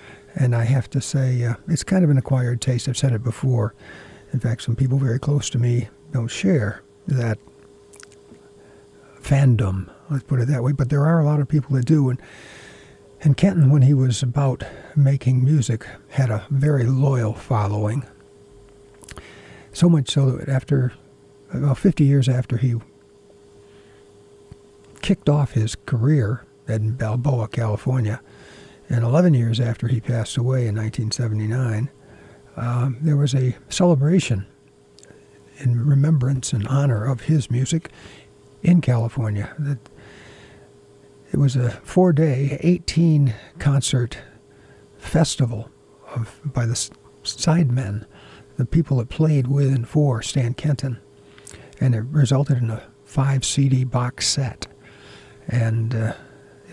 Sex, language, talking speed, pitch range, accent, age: male, English, 130 wpm, 110-140 Hz, American, 60-79